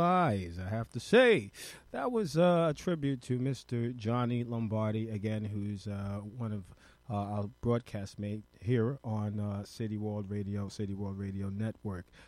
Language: English